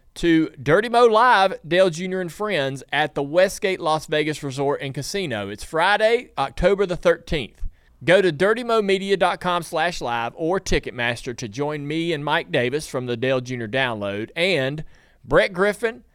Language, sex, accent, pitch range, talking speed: English, male, American, 130-175 Hz, 155 wpm